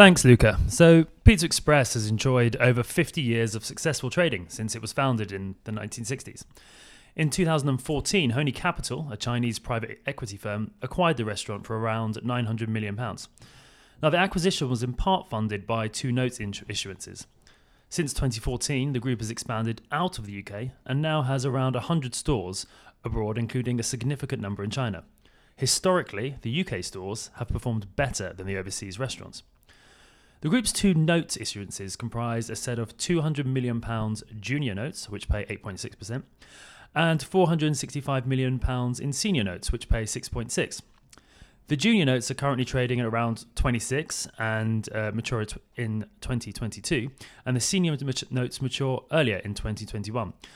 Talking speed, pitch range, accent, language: 150 wpm, 110-140 Hz, British, English